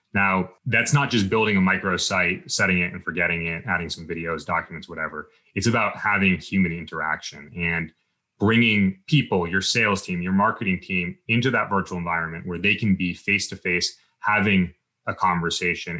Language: English